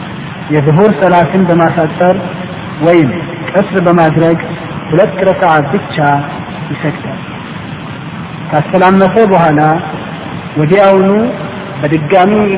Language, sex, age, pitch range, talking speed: Amharic, male, 50-69, 155-185 Hz, 60 wpm